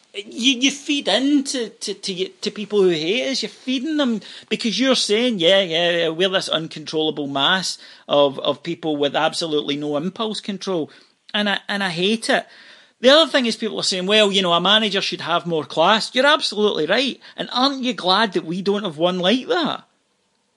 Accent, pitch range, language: British, 155-225 Hz, English